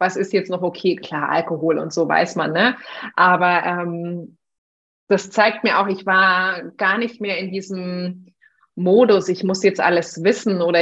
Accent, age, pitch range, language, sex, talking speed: German, 30-49, 175-215 Hz, German, female, 175 wpm